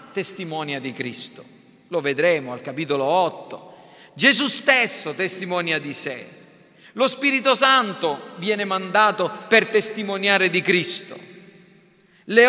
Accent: native